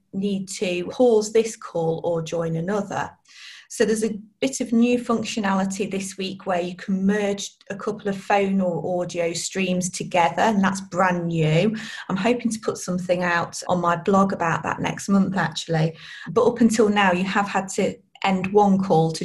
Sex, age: female, 30-49